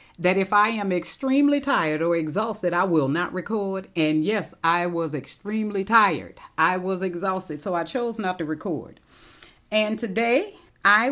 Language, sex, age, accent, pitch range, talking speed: English, female, 40-59, American, 170-250 Hz, 160 wpm